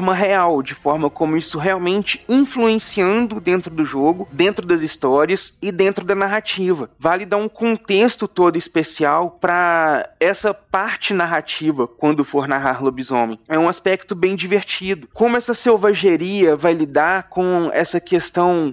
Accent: Brazilian